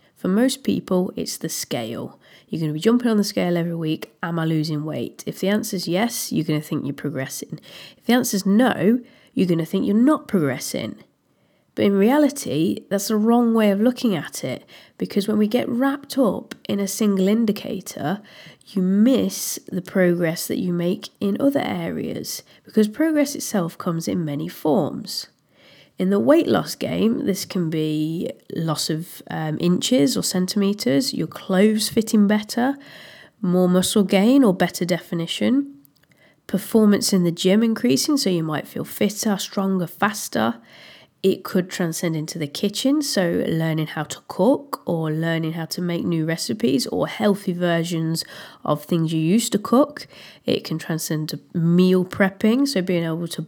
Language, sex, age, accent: English, female, 30-49, British